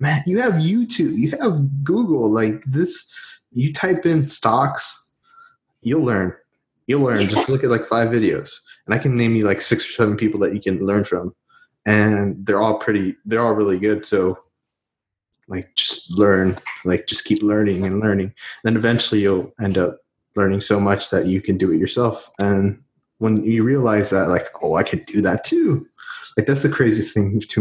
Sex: male